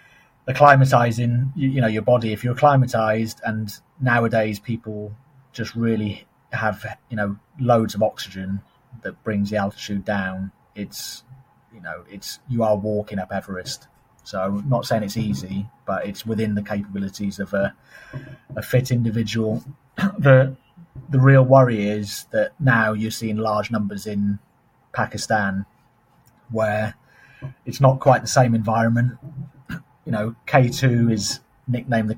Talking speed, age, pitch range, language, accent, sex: 140 wpm, 30-49, 105-130 Hz, English, British, male